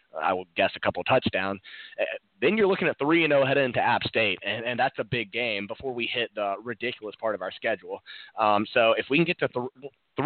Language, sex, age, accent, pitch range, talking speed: English, male, 30-49, American, 100-125 Hz, 230 wpm